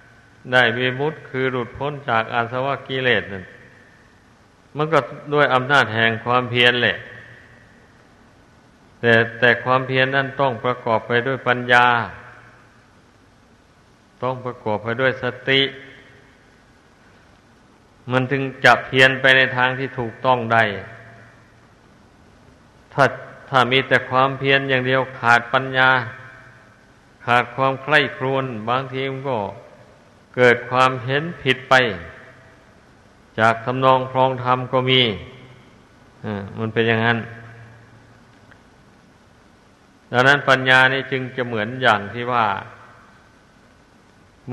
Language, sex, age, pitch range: Thai, male, 60-79, 115-130 Hz